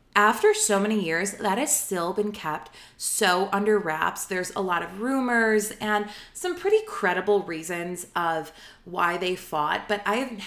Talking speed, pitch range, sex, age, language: 165 wpm, 170-220 Hz, female, 20-39, English